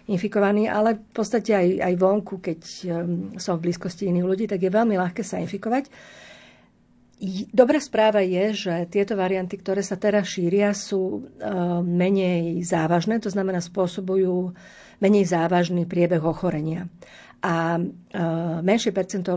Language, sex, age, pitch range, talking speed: Slovak, female, 50-69, 175-200 Hz, 125 wpm